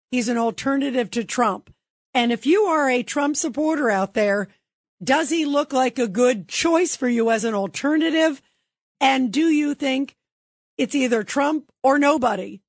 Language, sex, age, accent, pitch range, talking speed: English, female, 50-69, American, 215-270 Hz, 165 wpm